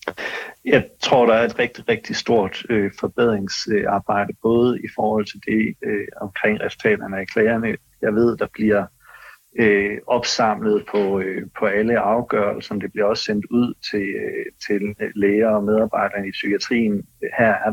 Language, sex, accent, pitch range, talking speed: Danish, male, native, 100-110 Hz, 140 wpm